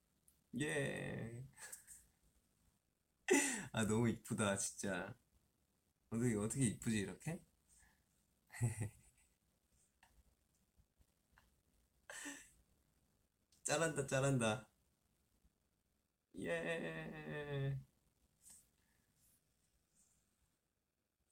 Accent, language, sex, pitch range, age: native, Korean, male, 80-120 Hz, 20-39